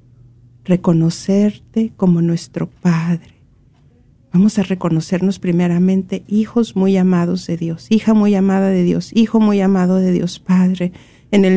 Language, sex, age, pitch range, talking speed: Spanish, female, 50-69, 180-220 Hz, 135 wpm